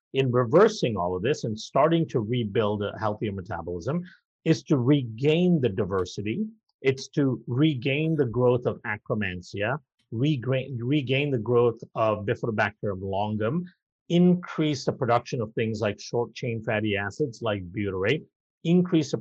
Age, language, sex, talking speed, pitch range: 50-69, English, male, 135 wpm, 110-145 Hz